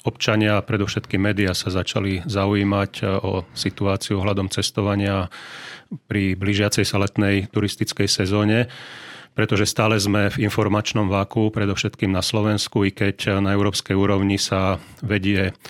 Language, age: Slovak, 40-59